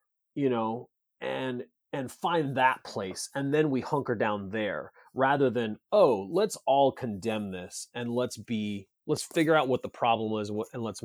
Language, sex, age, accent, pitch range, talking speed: English, male, 30-49, American, 110-140 Hz, 180 wpm